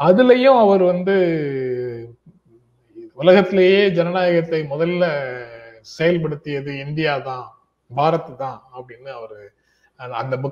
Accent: native